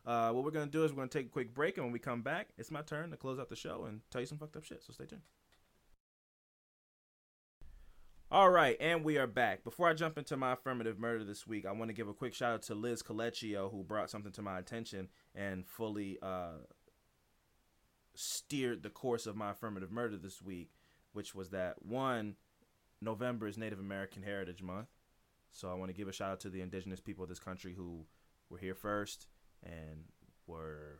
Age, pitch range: 20-39, 90-115 Hz